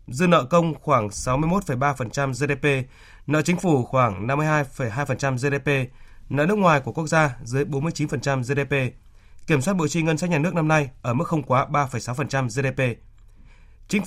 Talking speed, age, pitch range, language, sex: 160 wpm, 20-39, 130-160 Hz, Vietnamese, male